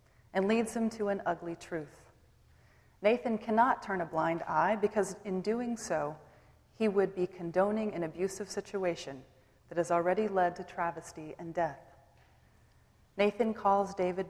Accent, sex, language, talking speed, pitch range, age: American, female, English, 145 wpm, 165-205 Hz, 30-49